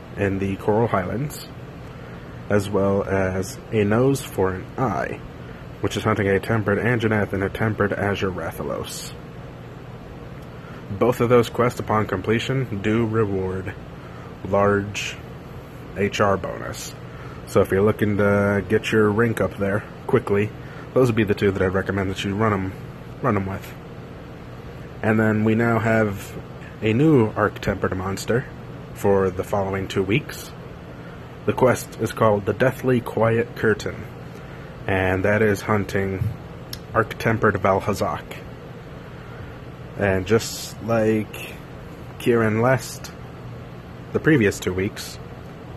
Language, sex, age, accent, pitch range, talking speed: English, male, 30-49, American, 95-115 Hz, 130 wpm